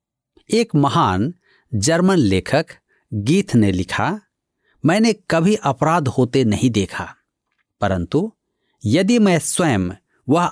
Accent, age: native, 50-69